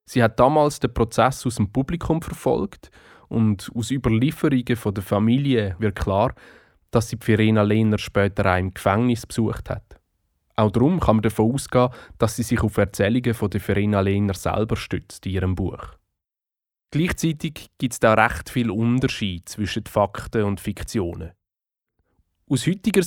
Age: 20-39